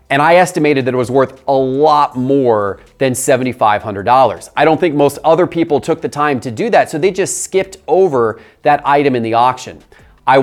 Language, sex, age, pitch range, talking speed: English, male, 30-49, 125-150 Hz, 200 wpm